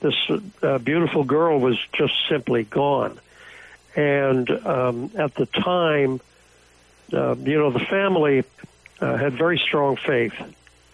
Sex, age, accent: male, 60-79, American